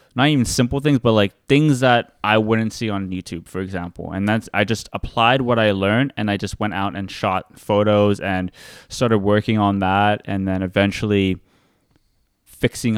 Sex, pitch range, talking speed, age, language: male, 100-115 Hz, 185 wpm, 20-39, English